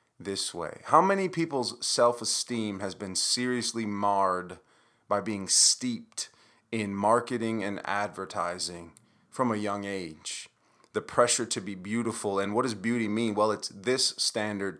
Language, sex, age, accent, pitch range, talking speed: English, male, 30-49, American, 105-130 Hz, 140 wpm